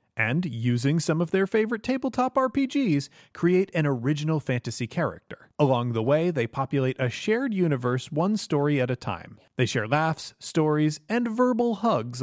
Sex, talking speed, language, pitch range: male, 160 wpm, English, 125-165 Hz